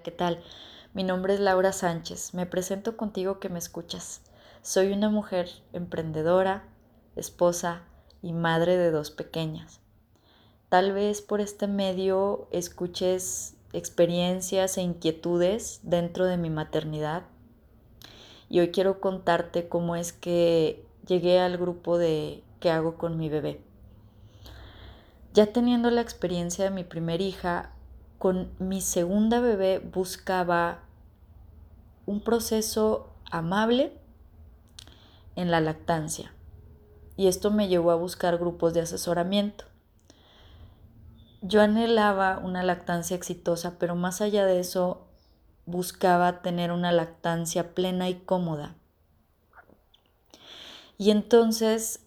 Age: 20-39